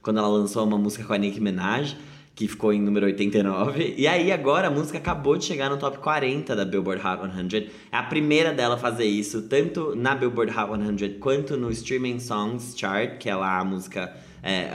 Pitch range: 105-150 Hz